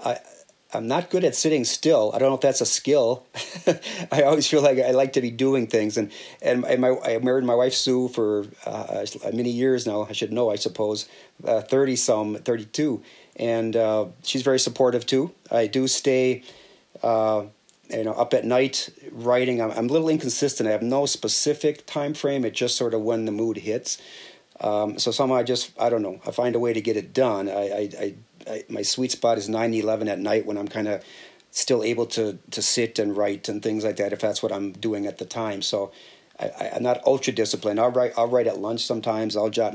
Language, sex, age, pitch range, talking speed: English, male, 40-59, 105-125 Hz, 220 wpm